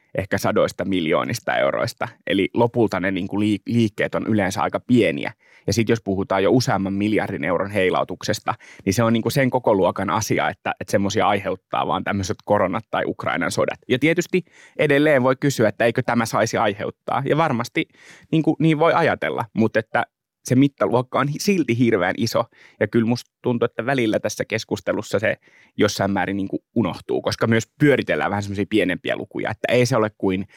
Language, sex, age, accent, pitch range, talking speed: Finnish, male, 20-39, native, 100-125 Hz, 165 wpm